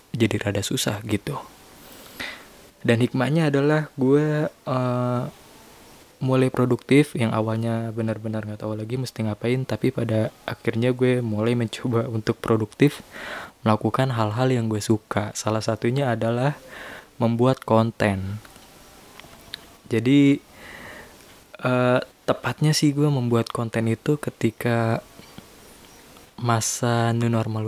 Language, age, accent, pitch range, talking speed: Indonesian, 20-39, native, 110-125 Hz, 105 wpm